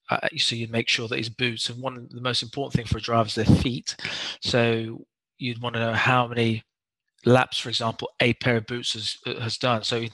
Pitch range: 110-125 Hz